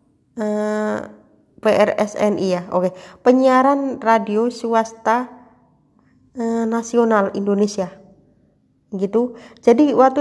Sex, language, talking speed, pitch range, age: female, Indonesian, 80 wpm, 200-245 Hz, 20-39